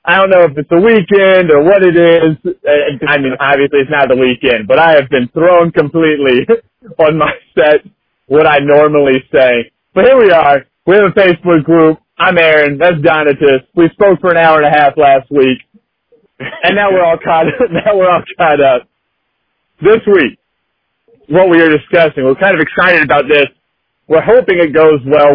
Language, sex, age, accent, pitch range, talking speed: English, male, 30-49, American, 140-180 Hz, 185 wpm